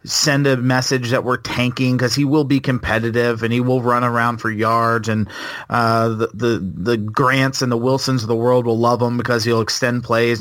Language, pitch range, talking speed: English, 115-135 Hz, 215 wpm